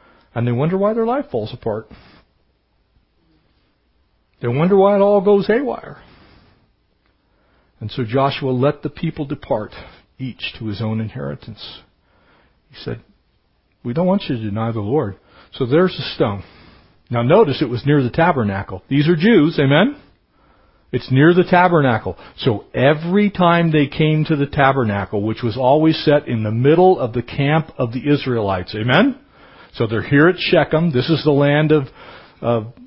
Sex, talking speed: male, 160 wpm